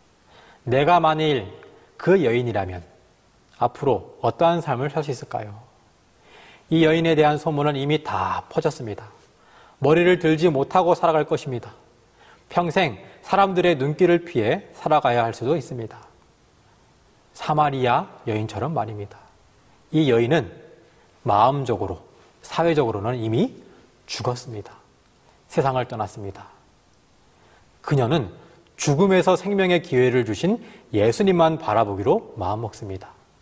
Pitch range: 115-170 Hz